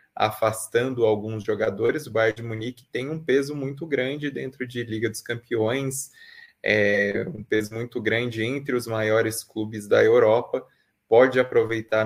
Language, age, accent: Portuguese, 20-39, Brazilian